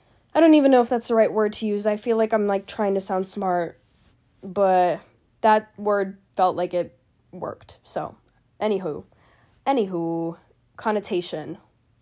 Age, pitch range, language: 10-29, 175-225 Hz, English